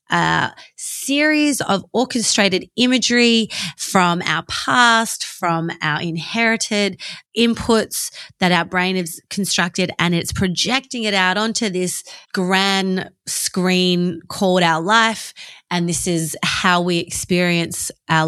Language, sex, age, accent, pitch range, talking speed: English, female, 30-49, Australian, 170-220 Hz, 120 wpm